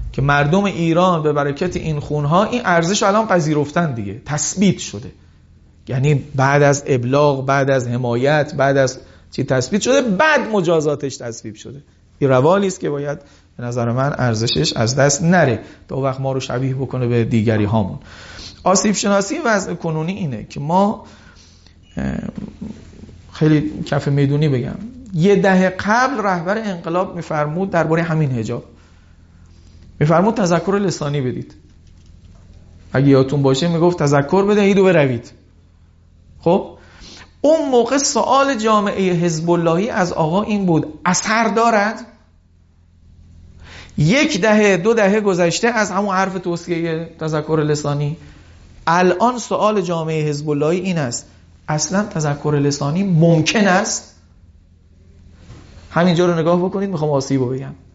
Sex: male